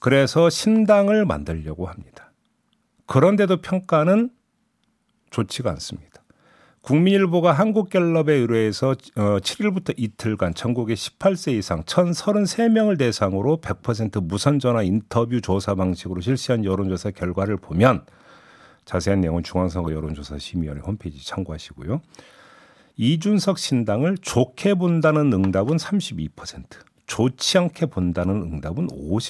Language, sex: Korean, male